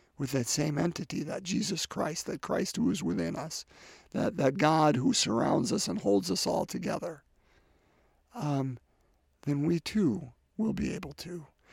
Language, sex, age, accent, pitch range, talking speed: English, male, 50-69, American, 90-150 Hz, 165 wpm